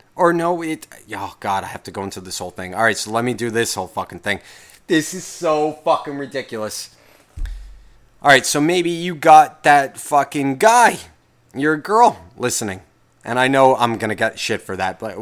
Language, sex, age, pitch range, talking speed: English, male, 30-49, 110-155 Hz, 205 wpm